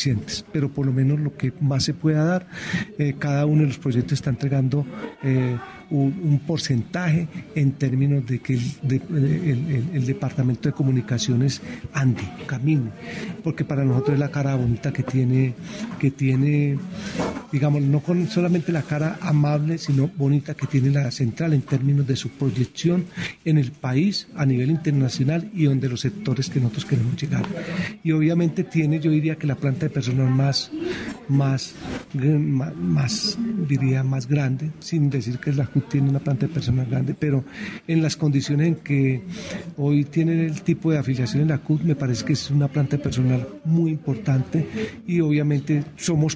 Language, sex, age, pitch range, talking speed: Spanish, male, 40-59, 135-160 Hz, 170 wpm